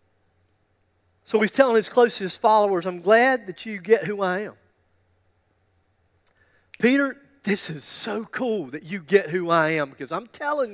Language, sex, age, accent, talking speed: English, male, 40-59, American, 155 wpm